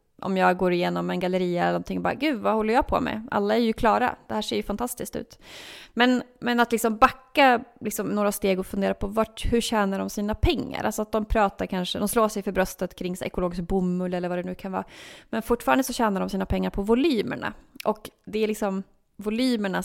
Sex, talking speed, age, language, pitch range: female, 235 wpm, 30-49, Swedish, 180-235 Hz